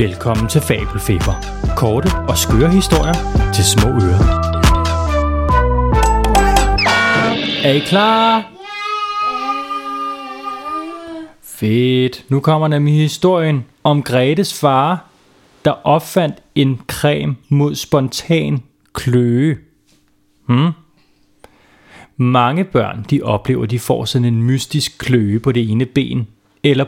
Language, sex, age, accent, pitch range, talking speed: Danish, male, 30-49, native, 110-155 Hz, 100 wpm